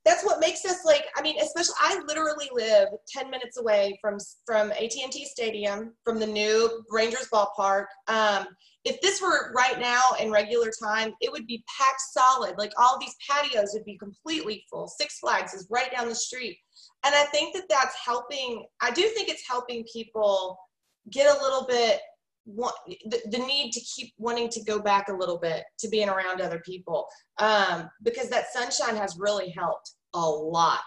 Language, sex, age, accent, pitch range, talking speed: English, female, 30-49, American, 210-310 Hz, 185 wpm